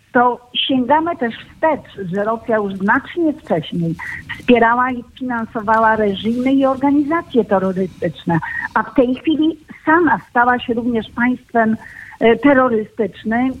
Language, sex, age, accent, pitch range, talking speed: Polish, female, 50-69, native, 210-250 Hz, 120 wpm